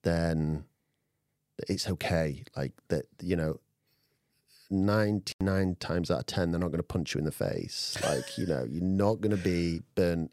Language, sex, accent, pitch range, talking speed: English, male, British, 85-110 Hz, 175 wpm